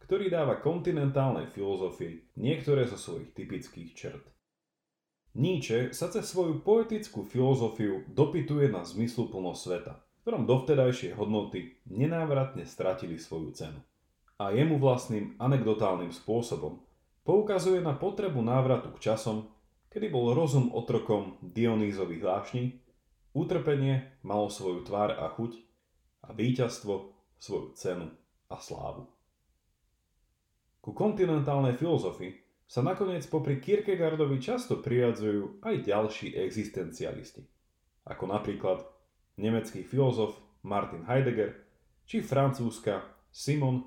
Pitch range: 100-140 Hz